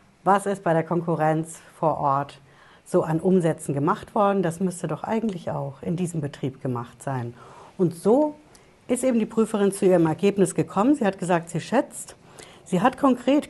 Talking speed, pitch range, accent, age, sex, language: 180 wpm, 160-205 Hz, German, 60-79, female, German